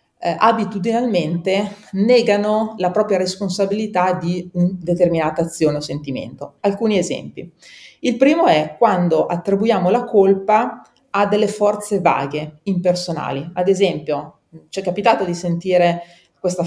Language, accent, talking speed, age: Italian, native, 120 wpm, 30-49